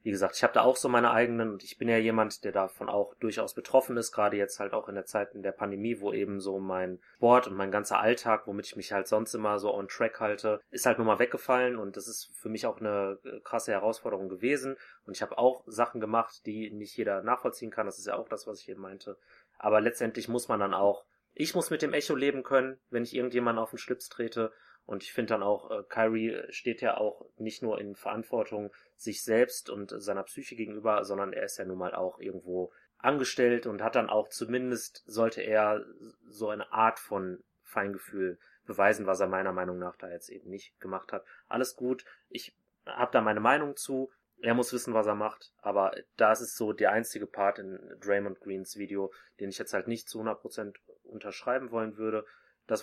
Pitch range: 100-120 Hz